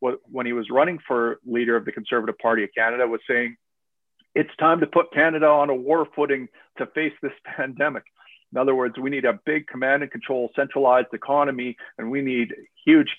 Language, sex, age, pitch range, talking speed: English, male, 40-59, 115-135 Hz, 195 wpm